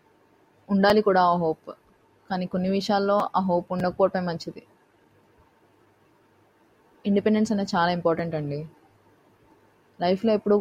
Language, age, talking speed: Telugu, 20-39, 100 wpm